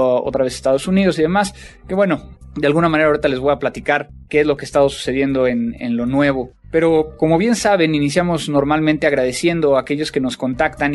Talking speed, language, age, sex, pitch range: 210 wpm, Spanish, 20-39, male, 130-155 Hz